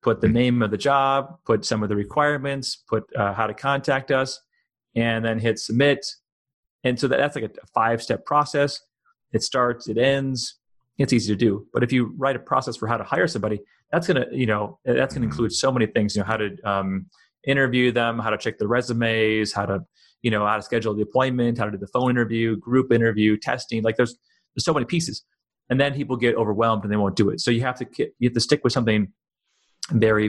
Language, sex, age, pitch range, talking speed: Croatian, male, 30-49, 105-130 Hz, 230 wpm